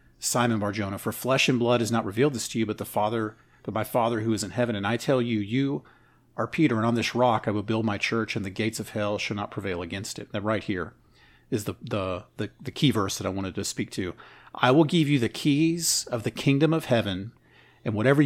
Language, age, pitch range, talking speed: English, 40-59, 110-130 Hz, 255 wpm